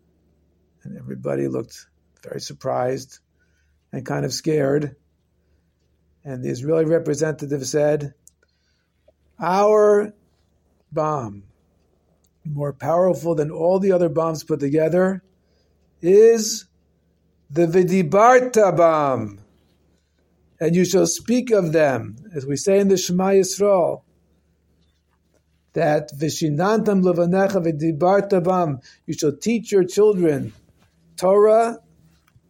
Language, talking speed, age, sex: English, 100 wpm, 50-69, male